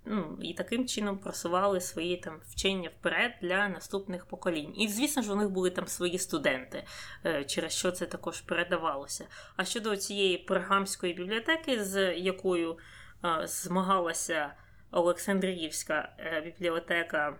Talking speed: 130 wpm